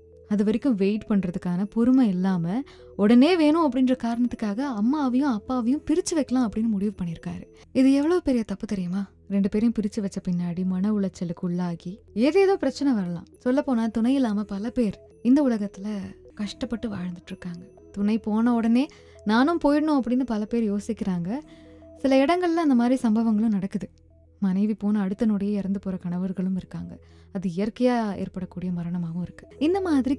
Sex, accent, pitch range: female, native, 190-250 Hz